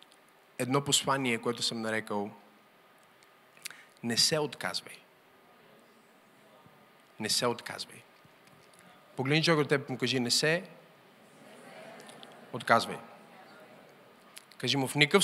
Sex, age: male, 40-59